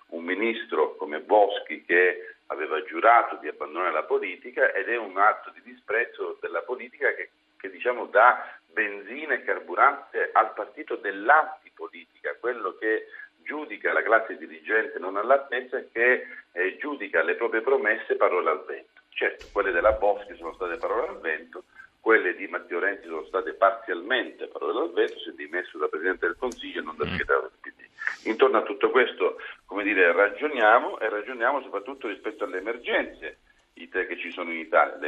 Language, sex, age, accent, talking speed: Italian, male, 50-69, native, 170 wpm